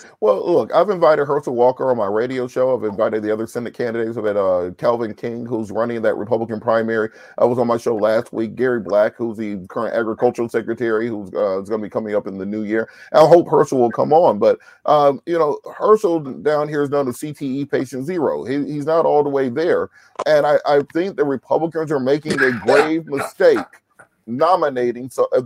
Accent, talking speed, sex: American, 215 wpm, male